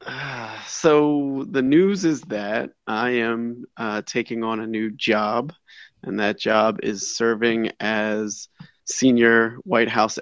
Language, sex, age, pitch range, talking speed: English, male, 30-49, 110-125 Hz, 130 wpm